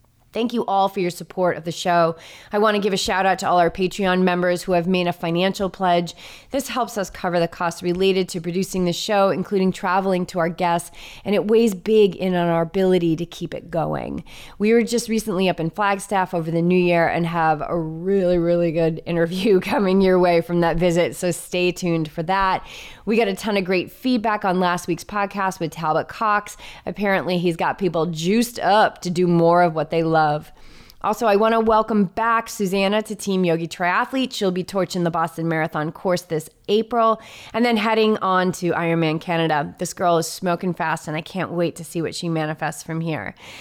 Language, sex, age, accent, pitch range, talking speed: English, female, 30-49, American, 170-195 Hz, 210 wpm